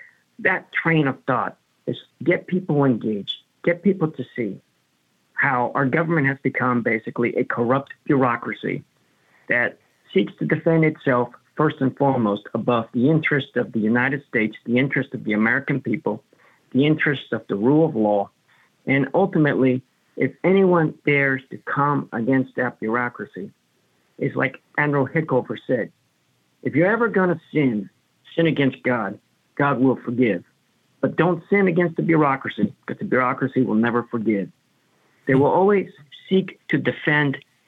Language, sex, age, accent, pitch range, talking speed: English, male, 50-69, American, 125-155 Hz, 150 wpm